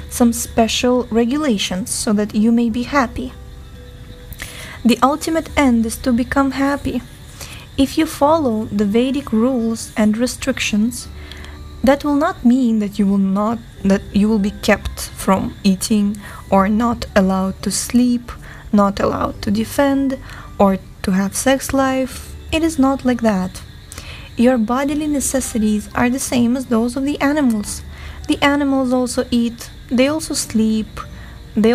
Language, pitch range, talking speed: English, 215-270 Hz, 145 wpm